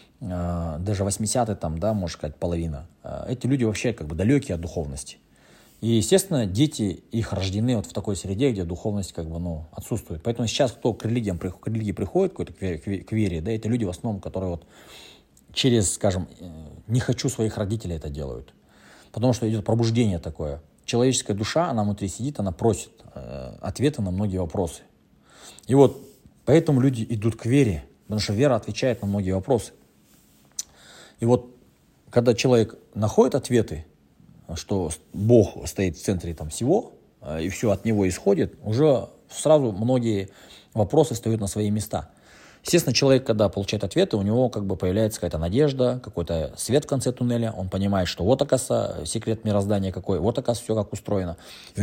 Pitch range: 90-120 Hz